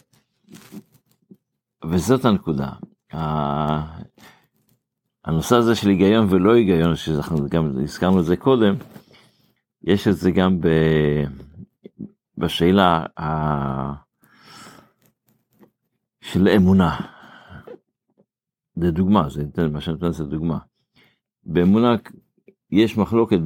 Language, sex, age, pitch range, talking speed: Hebrew, male, 50-69, 85-110 Hz, 80 wpm